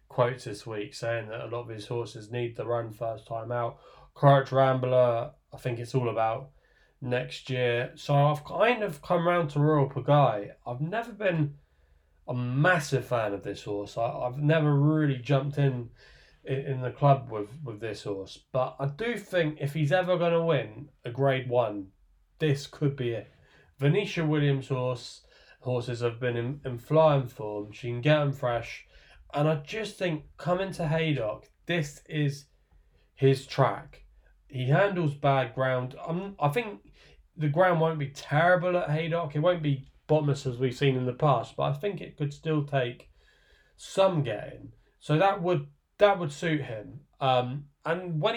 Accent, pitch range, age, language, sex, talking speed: British, 120-155 Hz, 20-39, English, male, 175 wpm